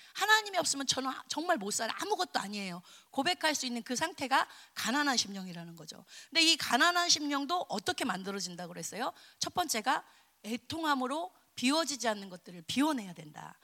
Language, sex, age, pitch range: Korean, female, 30-49, 230-335 Hz